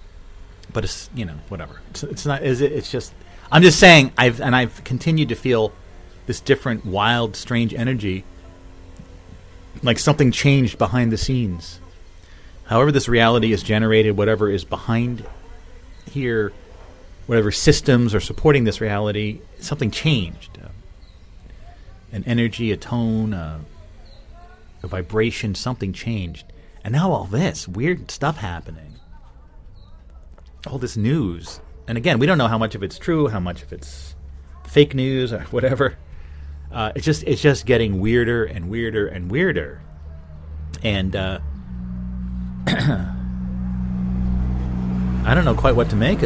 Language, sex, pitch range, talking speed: English, male, 80-115 Hz, 140 wpm